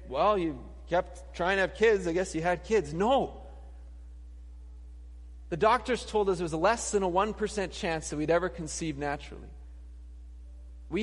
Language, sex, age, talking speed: English, male, 30-49, 165 wpm